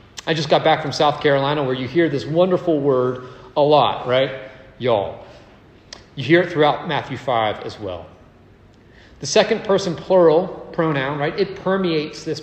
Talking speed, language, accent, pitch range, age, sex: 165 wpm, English, American, 125-170 Hz, 40-59, male